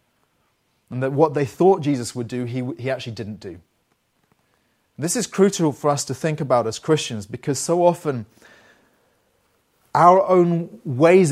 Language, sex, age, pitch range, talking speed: English, male, 30-49, 115-150 Hz, 155 wpm